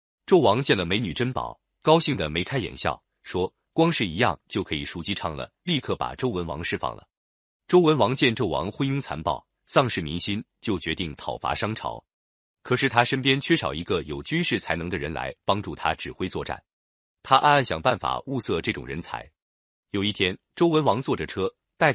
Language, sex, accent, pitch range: Chinese, male, native, 85-135 Hz